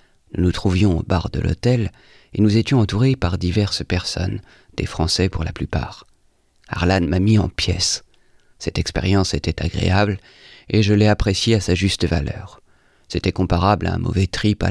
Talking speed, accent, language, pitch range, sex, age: 170 wpm, French, French, 90-105 Hz, male, 40-59